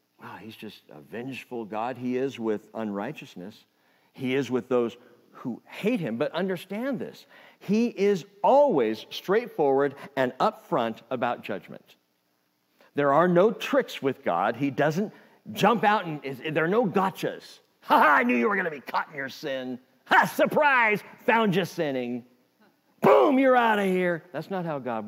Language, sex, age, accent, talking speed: English, male, 50-69, American, 165 wpm